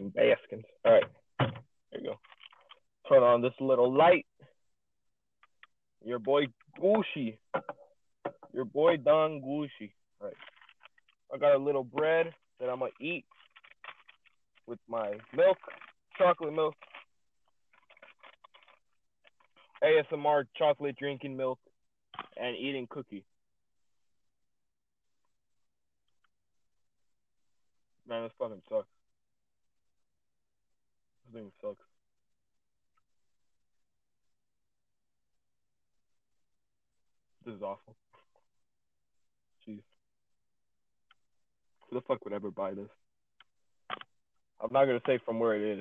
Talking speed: 85 wpm